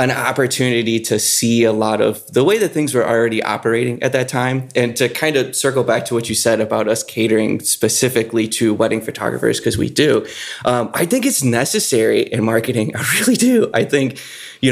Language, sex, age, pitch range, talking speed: English, male, 20-39, 110-135 Hz, 205 wpm